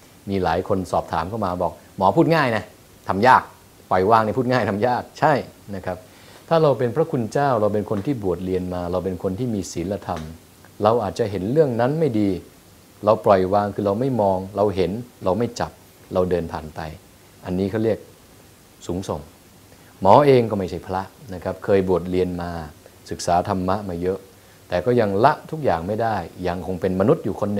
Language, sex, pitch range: English, male, 95-120 Hz